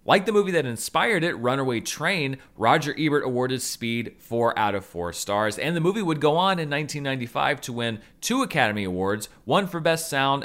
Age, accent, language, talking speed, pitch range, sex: 30-49, American, English, 195 wpm, 110-175 Hz, male